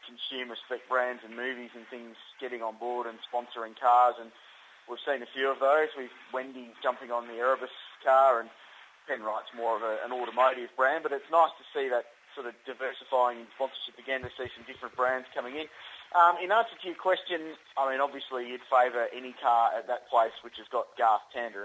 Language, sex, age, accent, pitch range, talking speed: English, male, 30-49, Australian, 115-130 Hz, 200 wpm